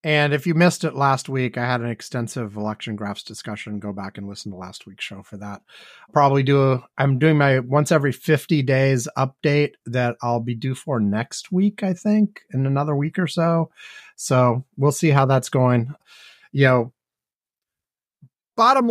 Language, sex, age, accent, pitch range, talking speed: English, male, 30-49, American, 130-175 Hz, 185 wpm